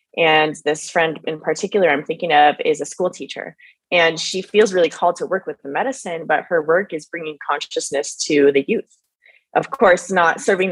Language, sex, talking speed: English, female, 195 wpm